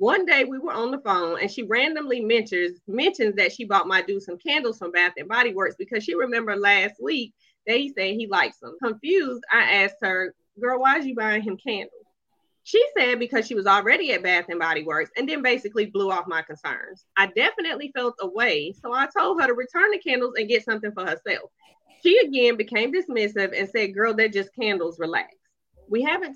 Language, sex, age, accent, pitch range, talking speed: English, female, 30-49, American, 200-285 Hz, 215 wpm